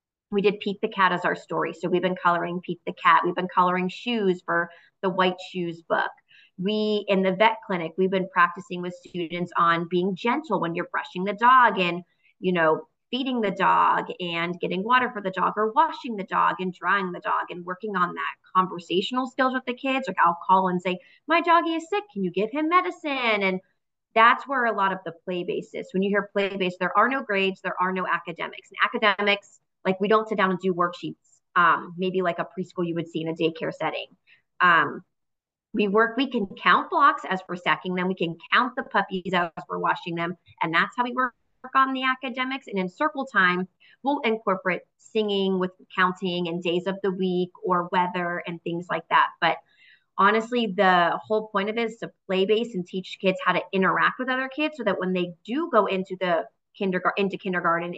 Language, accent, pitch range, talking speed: English, American, 180-220 Hz, 215 wpm